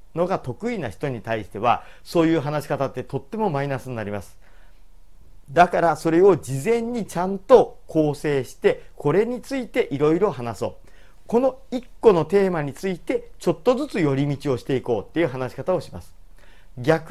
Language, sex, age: Japanese, male, 40-59